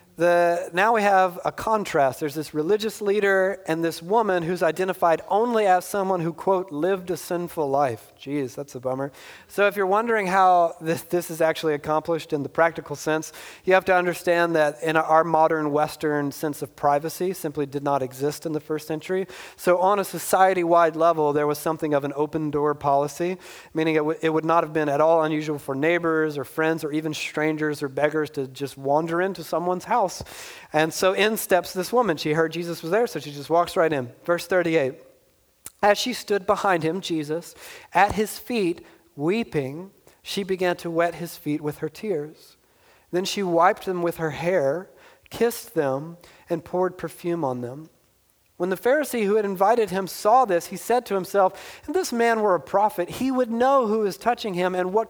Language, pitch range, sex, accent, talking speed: English, 155-195 Hz, male, American, 195 wpm